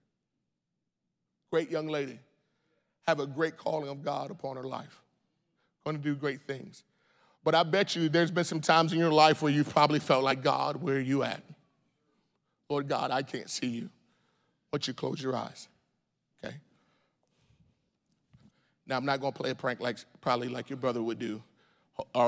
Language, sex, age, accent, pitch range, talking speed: English, male, 40-59, American, 145-185 Hz, 180 wpm